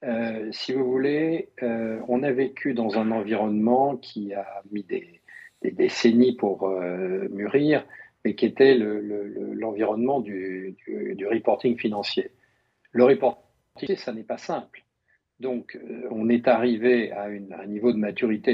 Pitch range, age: 105-145 Hz, 50-69